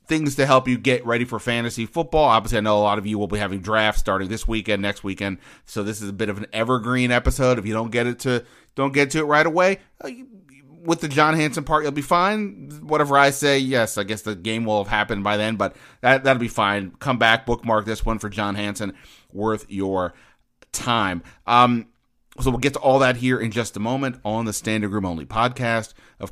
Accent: American